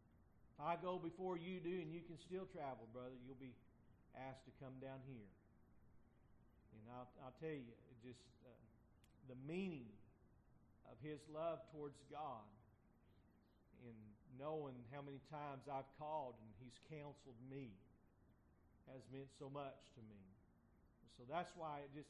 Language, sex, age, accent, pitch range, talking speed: English, male, 50-69, American, 115-150 Hz, 145 wpm